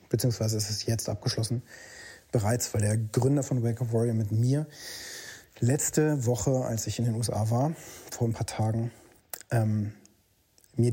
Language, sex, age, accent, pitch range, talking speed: German, male, 30-49, German, 110-130 Hz, 160 wpm